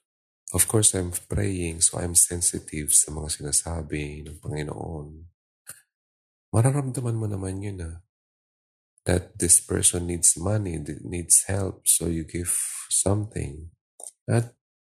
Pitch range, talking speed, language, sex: 70-95 Hz, 120 wpm, Filipino, male